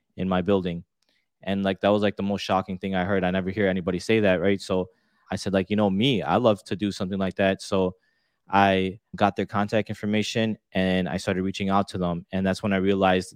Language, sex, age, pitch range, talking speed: English, male, 20-39, 95-100 Hz, 240 wpm